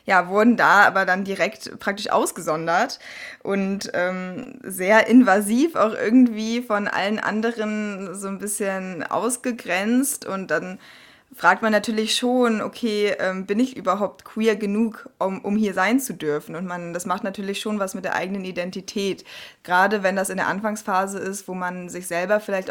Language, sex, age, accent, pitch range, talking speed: German, female, 20-39, German, 185-225 Hz, 165 wpm